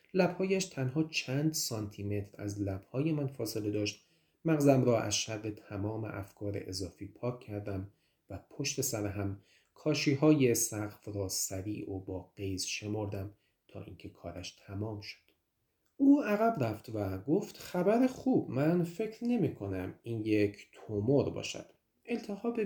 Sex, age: male, 30-49